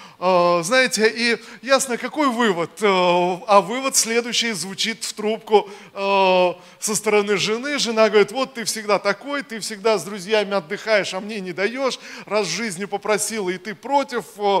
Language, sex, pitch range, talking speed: Russian, male, 180-220 Hz, 150 wpm